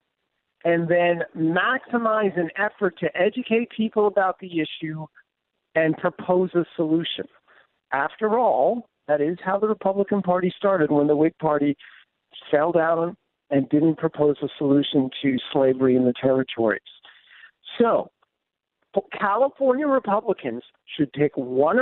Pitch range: 155-220 Hz